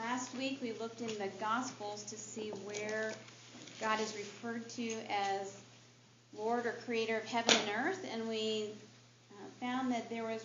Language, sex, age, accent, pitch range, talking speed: English, female, 40-59, American, 200-240 Hz, 160 wpm